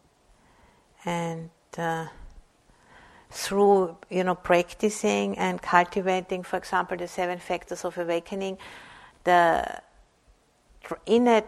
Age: 50-69